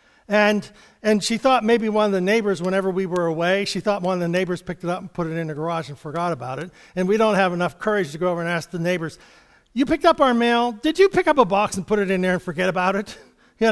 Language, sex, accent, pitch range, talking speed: English, male, American, 170-230 Hz, 290 wpm